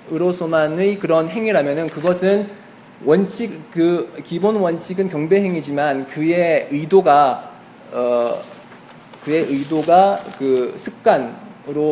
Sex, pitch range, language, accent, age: male, 145-195 Hz, Korean, native, 20-39